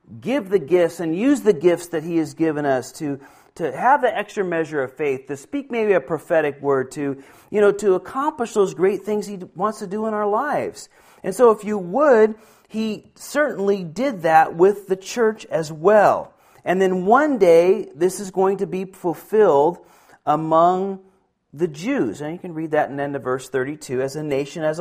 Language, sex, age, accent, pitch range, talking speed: Finnish, male, 40-59, American, 145-200 Hz, 200 wpm